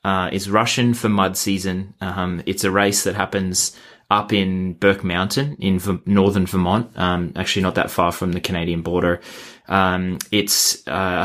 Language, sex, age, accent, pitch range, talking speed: English, male, 20-39, Australian, 90-105 Hz, 170 wpm